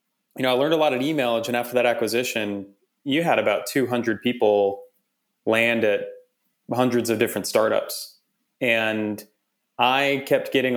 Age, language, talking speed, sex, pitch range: 30-49, English, 150 wpm, male, 110-130 Hz